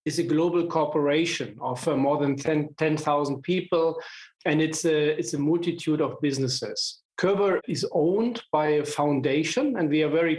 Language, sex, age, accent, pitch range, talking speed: English, male, 40-59, German, 145-170 Hz, 165 wpm